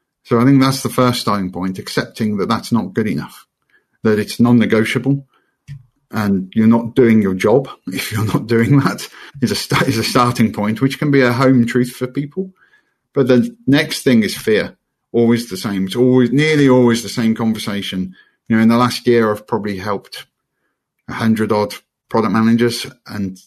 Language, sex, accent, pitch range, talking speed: English, male, British, 105-125 Hz, 185 wpm